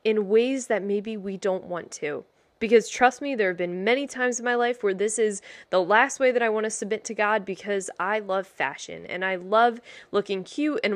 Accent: American